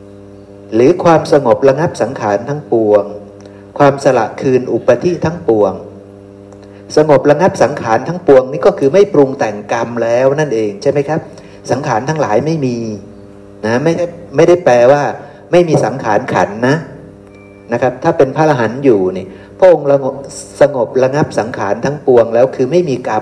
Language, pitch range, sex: Thai, 100-145 Hz, male